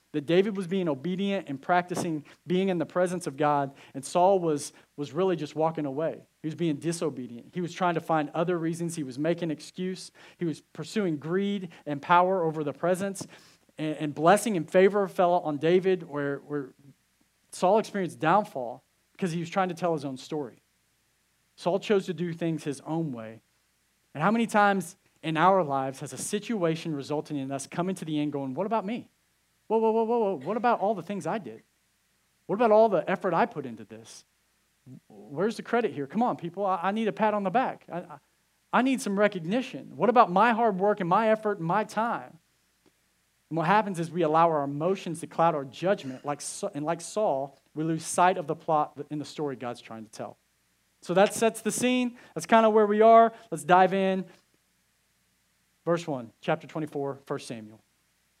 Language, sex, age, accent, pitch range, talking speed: English, male, 40-59, American, 150-195 Hz, 200 wpm